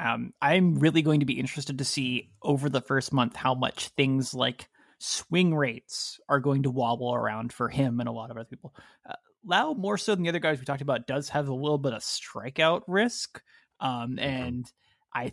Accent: American